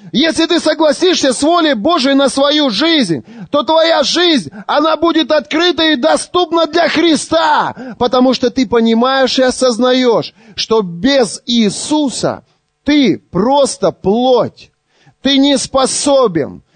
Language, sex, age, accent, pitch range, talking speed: Russian, male, 30-49, native, 225-290 Hz, 120 wpm